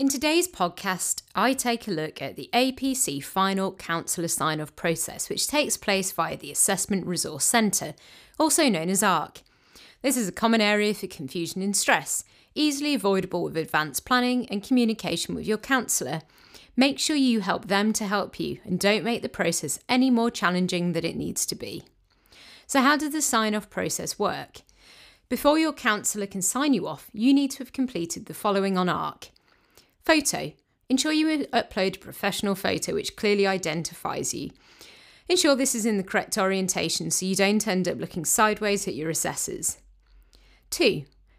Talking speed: 170 wpm